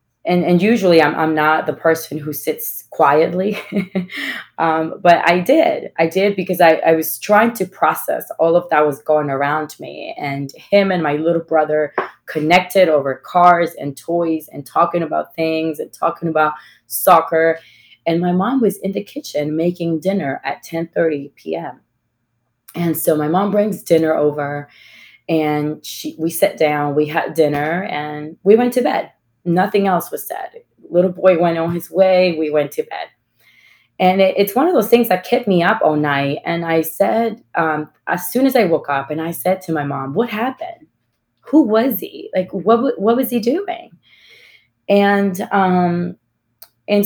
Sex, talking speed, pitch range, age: female, 175 wpm, 150-195 Hz, 20-39